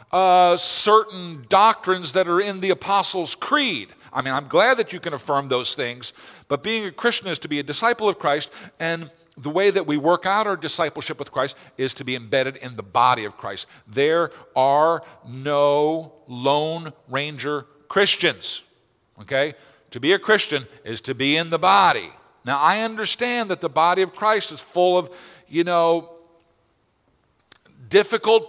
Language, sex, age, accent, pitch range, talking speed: English, male, 50-69, American, 145-200 Hz, 170 wpm